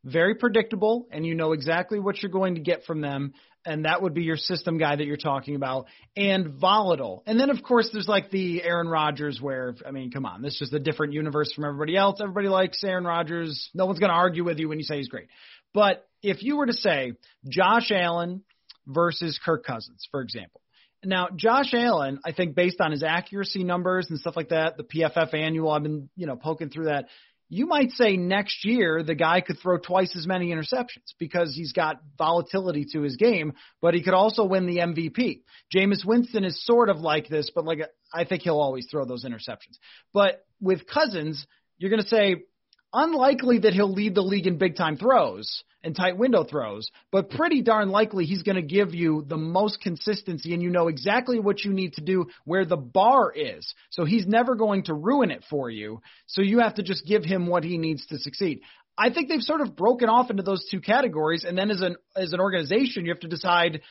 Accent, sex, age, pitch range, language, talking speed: American, male, 30-49, 160-205 Hz, English, 220 wpm